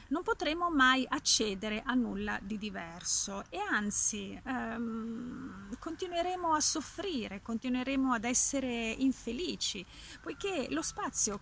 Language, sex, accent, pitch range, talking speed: Italian, female, native, 205-265 Hz, 110 wpm